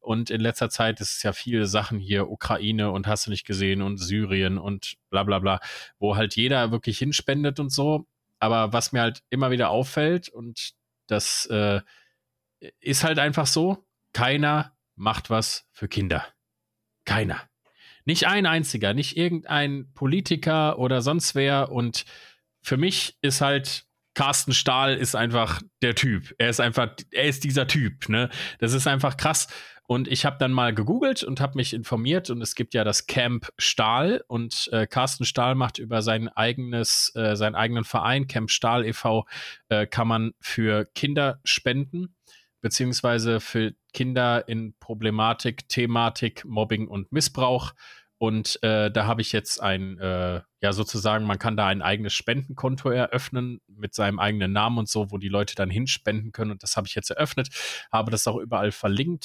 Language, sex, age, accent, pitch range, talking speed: German, male, 30-49, German, 110-135 Hz, 170 wpm